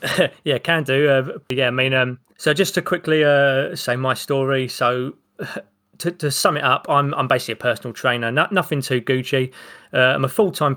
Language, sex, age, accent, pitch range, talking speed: English, male, 20-39, British, 130-155 Hz, 200 wpm